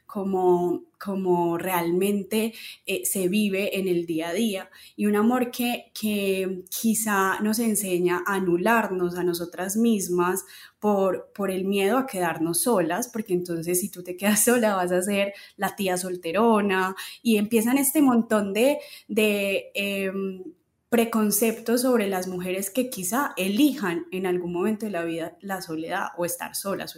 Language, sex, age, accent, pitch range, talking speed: Spanish, female, 20-39, Colombian, 180-225 Hz, 155 wpm